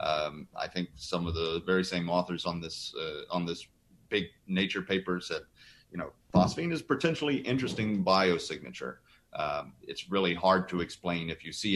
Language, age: English, 30-49